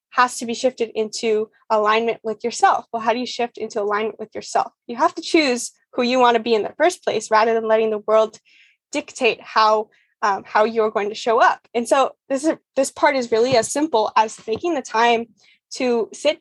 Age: 10-29